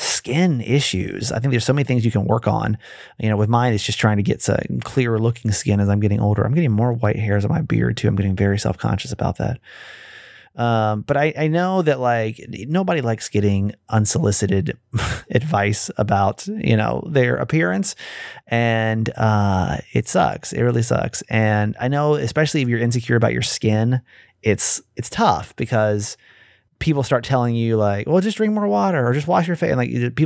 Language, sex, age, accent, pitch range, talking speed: English, male, 30-49, American, 110-160 Hz, 200 wpm